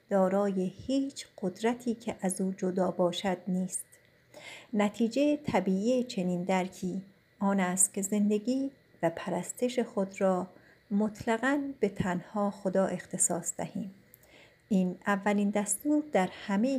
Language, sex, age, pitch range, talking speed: Persian, female, 50-69, 185-215 Hz, 115 wpm